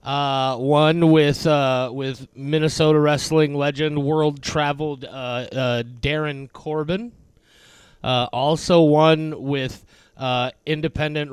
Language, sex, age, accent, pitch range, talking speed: English, male, 30-49, American, 140-185 Hz, 100 wpm